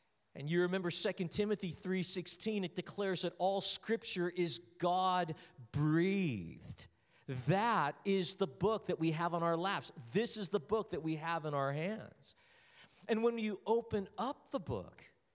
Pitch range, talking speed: 165-225 Hz, 155 wpm